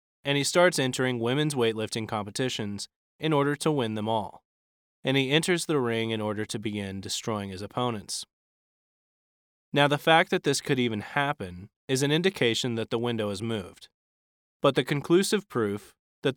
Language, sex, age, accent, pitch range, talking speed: English, male, 20-39, American, 105-140 Hz, 170 wpm